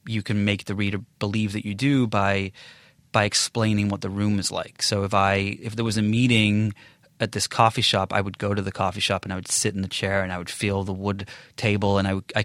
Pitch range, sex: 95-110 Hz, male